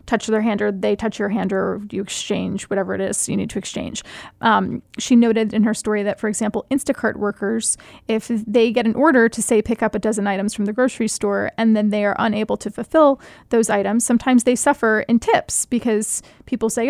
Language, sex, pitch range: English, female, 215-255 Hz